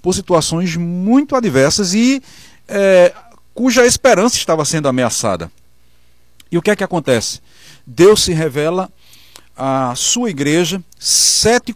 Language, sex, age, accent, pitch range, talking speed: Portuguese, male, 40-59, Brazilian, 130-185 Hz, 115 wpm